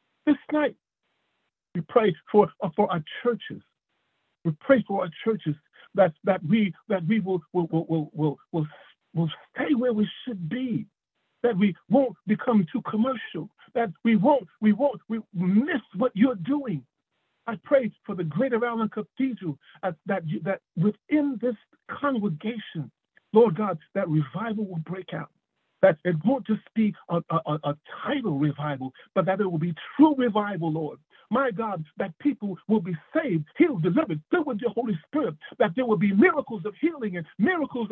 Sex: male